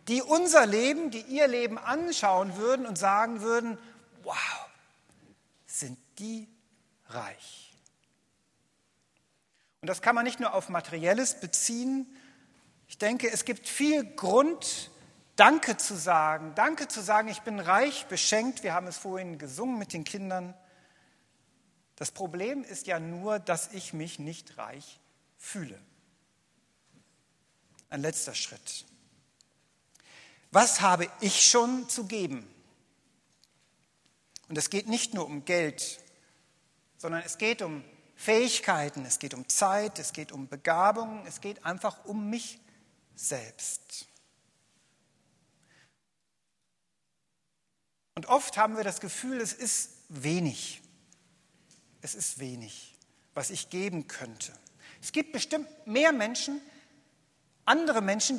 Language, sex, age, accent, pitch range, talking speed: German, male, 50-69, German, 165-235 Hz, 120 wpm